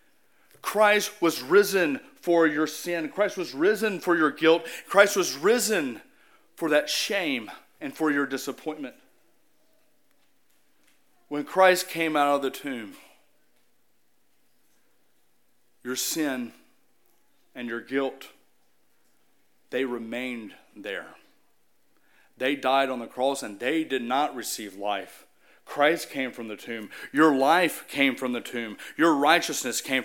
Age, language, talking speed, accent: 40-59, English, 125 wpm, American